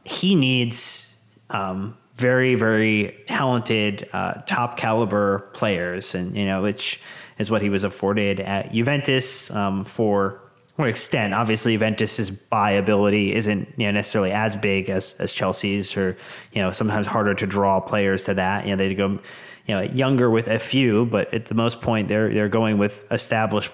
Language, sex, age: English, male, 30-49